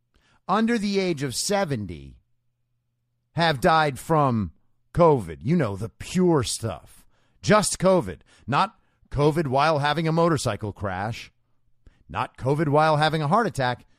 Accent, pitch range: American, 120-170 Hz